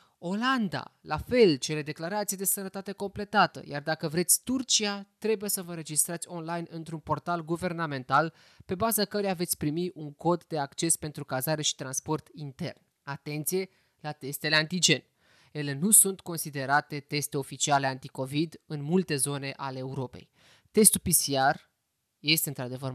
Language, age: Romanian, 20-39